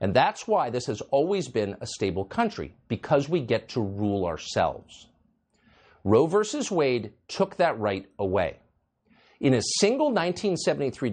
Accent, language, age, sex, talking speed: American, English, 50-69, male, 145 wpm